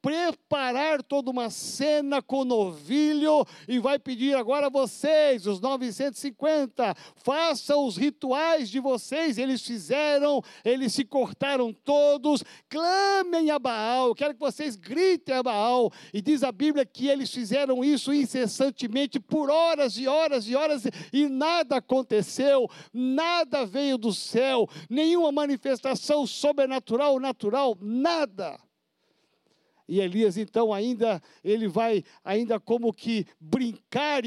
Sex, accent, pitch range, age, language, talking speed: male, Brazilian, 245-295 Hz, 60-79, Portuguese, 125 wpm